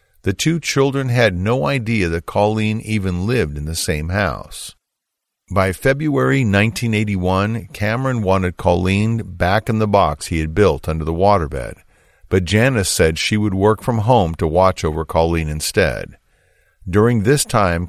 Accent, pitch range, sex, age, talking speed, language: American, 85-110 Hz, male, 50-69, 155 wpm, English